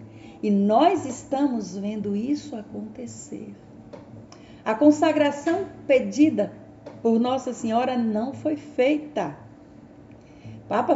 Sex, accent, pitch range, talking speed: female, Brazilian, 210-290 Hz, 90 wpm